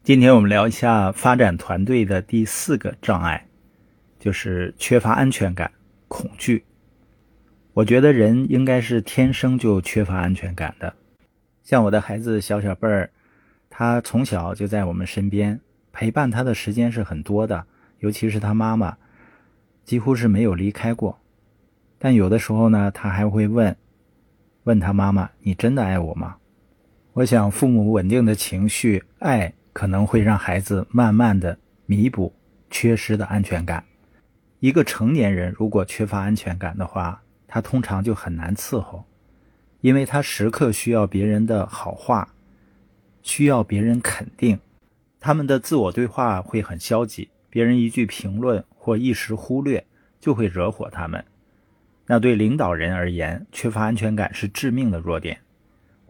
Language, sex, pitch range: Chinese, male, 100-115 Hz